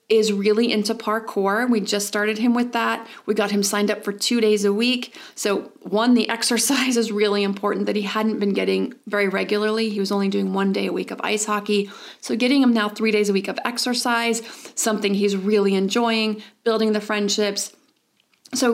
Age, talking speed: 30-49, 200 wpm